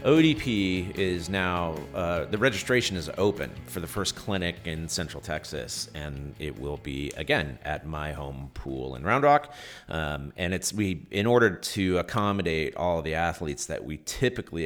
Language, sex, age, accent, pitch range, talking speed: English, male, 40-59, American, 75-95 Hz, 170 wpm